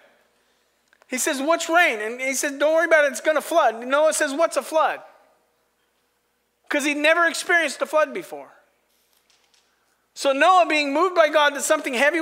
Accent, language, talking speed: American, English, 175 wpm